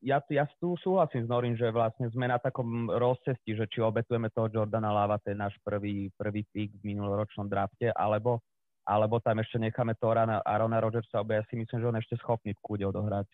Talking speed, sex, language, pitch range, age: 200 wpm, male, Slovak, 105-125 Hz, 30-49